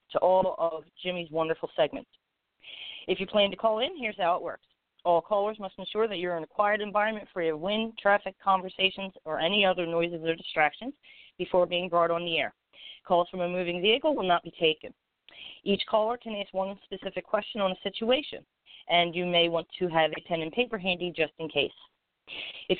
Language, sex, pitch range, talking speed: English, female, 170-215 Hz, 205 wpm